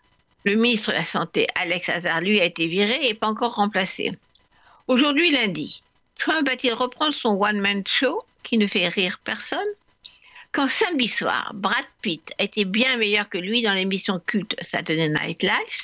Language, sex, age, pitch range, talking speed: French, female, 60-79, 200-265 Hz, 165 wpm